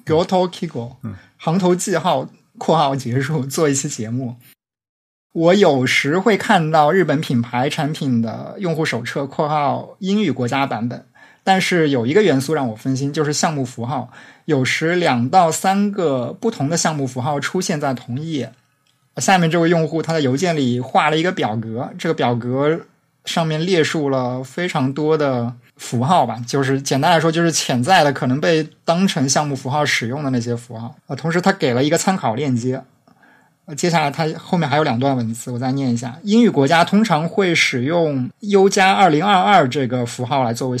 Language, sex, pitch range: Chinese, male, 130-170 Hz